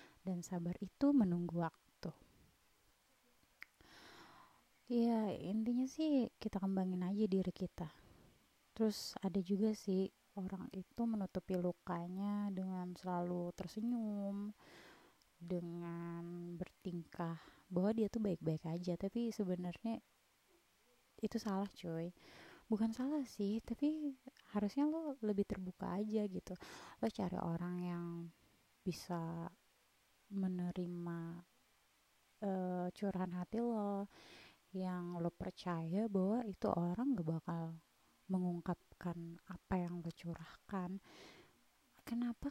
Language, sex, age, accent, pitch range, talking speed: Indonesian, female, 20-39, native, 175-215 Hz, 100 wpm